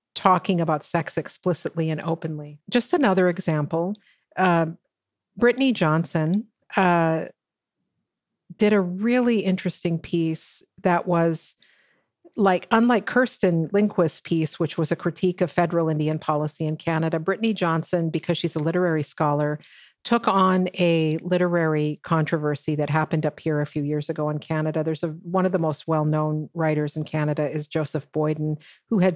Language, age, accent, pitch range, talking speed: English, 50-69, American, 155-180 Hz, 145 wpm